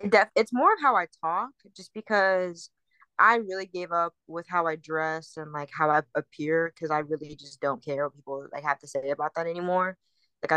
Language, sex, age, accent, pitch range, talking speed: English, female, 20-39, American, 160-185 Hz, 215 wpm